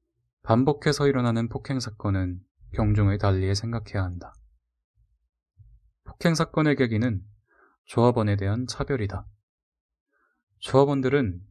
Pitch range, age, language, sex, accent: 100-130 Hz, 20-39, Korean, male, native